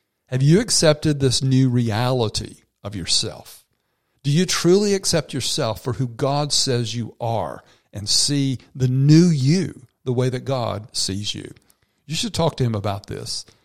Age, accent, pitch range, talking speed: 50-69, American, 115-140 Hz, 165 wpm